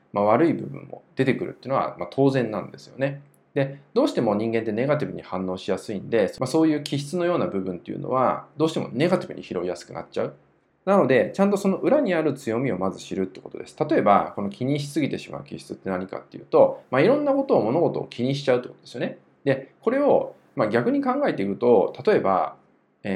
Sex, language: male, Japanese